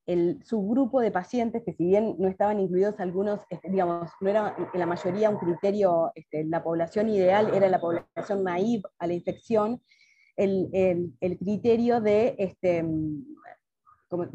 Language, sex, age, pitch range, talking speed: Spanish, female, 20-39, 175-215 Hz, 160 wpm